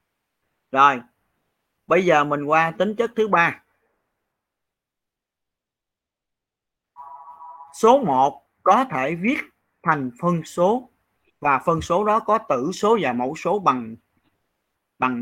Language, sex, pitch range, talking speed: Vietnamese, male, 130-205 Hz, 115 wpm